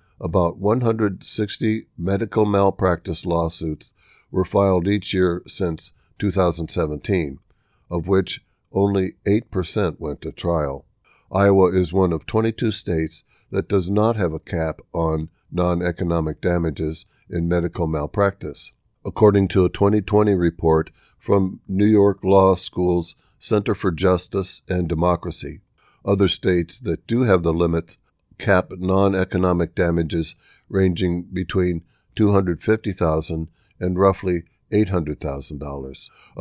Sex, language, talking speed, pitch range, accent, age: male, English, 110 wpm, 85-100 Hz, American, 60-79